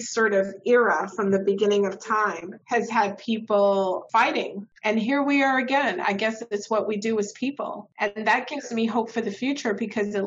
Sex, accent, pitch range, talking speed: female, American, 195-225 Hz, 205 wpm